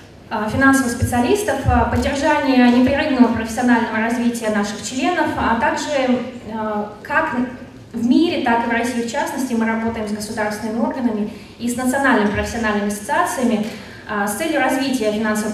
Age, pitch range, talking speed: 20-39, 225-275 Hz, 125 wpm